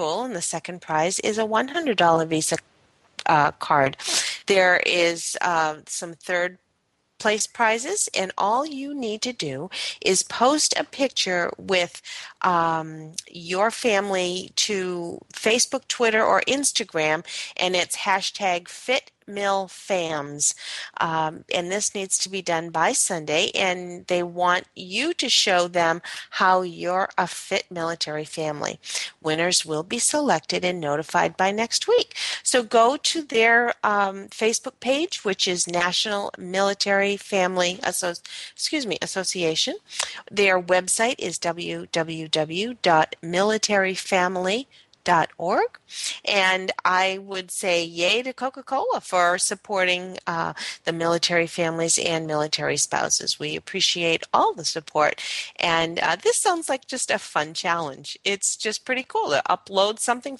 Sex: female